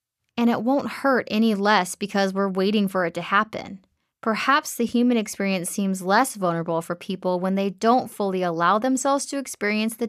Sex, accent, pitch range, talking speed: female, American, 190-235 Hz, 185 wpm